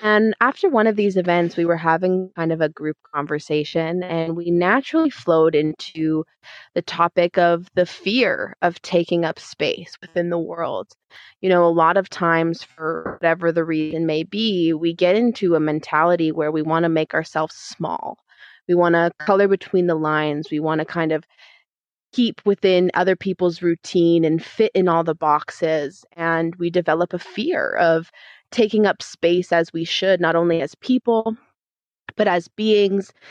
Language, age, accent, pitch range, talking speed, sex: English, 20-39, American, 160-185 Hz, 175 wpm, female